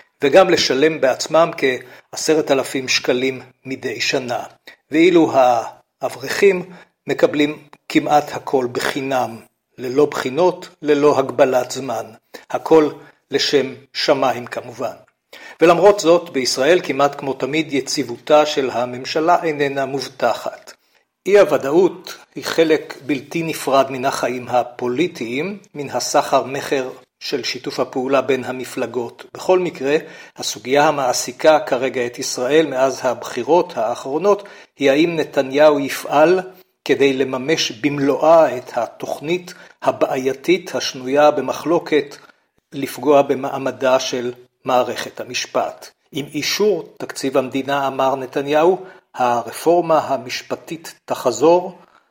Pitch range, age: 130-160 Hz, 50-69